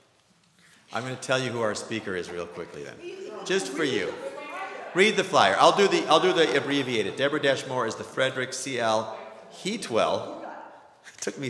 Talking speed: 185 wpm